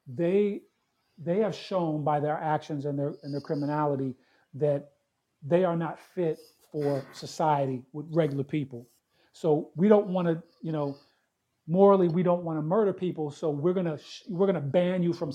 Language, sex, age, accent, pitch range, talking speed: English, male, 40-59, American, 145-180 Hz, 185 wpm